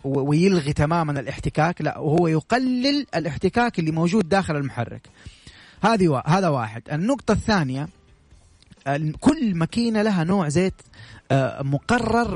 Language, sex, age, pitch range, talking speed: Arabic, male, 30-49, 140-190 Hz, 100 wpm